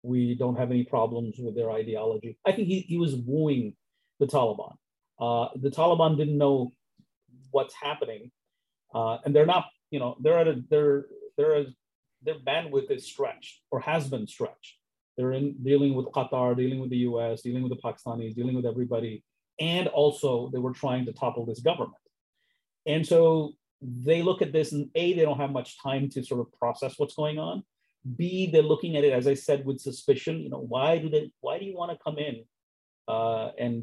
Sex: male